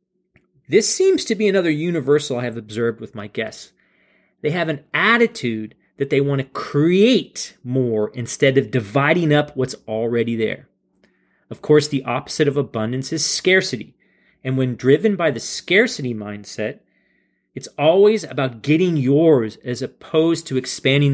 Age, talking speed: 30-49, 150 wpm